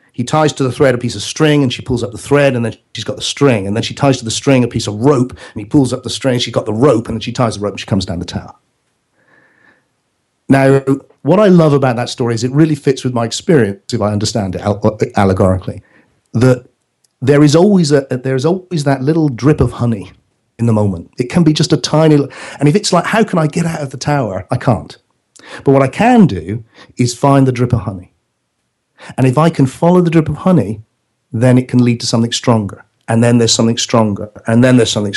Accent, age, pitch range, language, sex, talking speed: British, 40-59, 110-140 Hz, English, male, 245 wpm